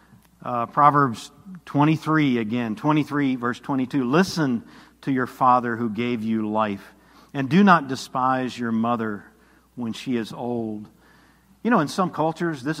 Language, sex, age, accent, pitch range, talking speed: English, male, 50-69, American, 120-150 Hz, 145 wpm